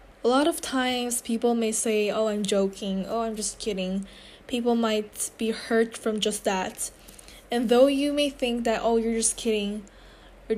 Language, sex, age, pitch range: Korean, female, 10-29, 200-230 Hz